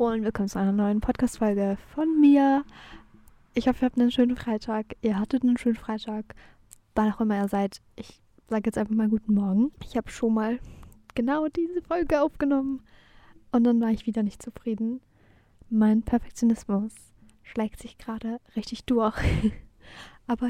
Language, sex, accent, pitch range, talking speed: German, female, German, 210-245 Hz, 160 wpm